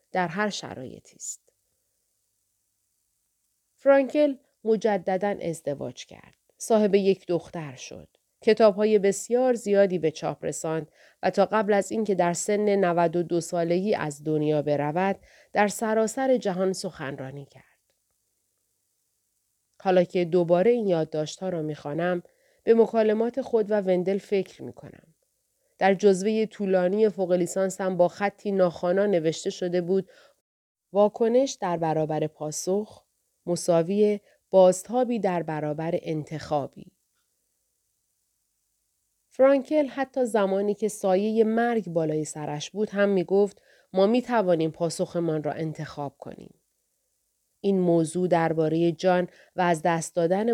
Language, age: Persian, 30-49